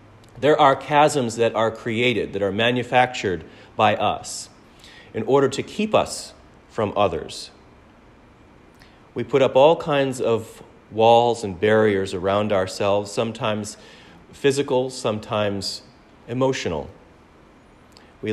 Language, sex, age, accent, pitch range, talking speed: English, male, 40-59, American, 100-120 Hz, 110 wpm